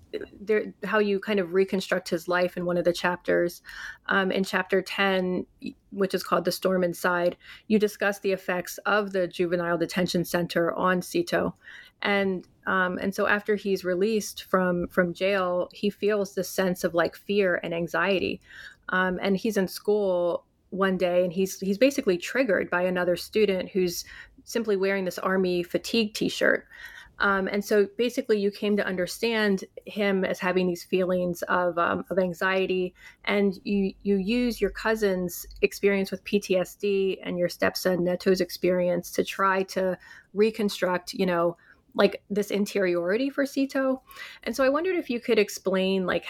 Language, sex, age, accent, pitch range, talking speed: English, female, 30-49, American, 180-205 Hz, 165 wpm